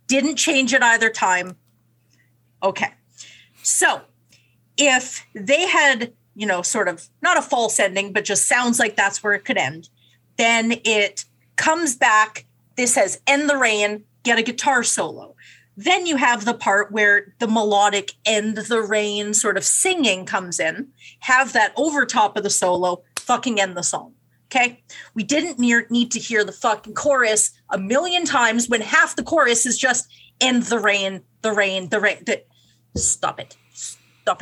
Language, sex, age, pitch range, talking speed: English, female, 30-49, 200-255 Hz, 165 wpm